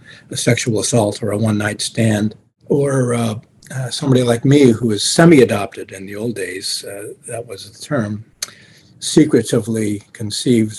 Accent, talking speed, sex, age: American, 150 wpm, male, 50-69